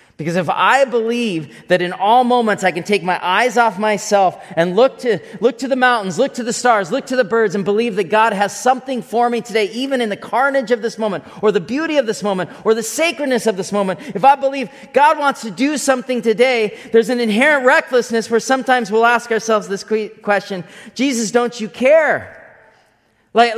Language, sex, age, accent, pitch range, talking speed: English, male, 30-49, American, 195-255 Hz, 210 wpm